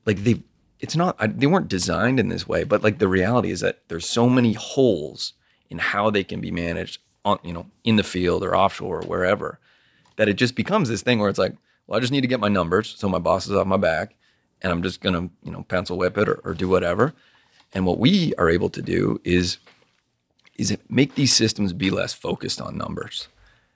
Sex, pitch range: male, 90-115 Hz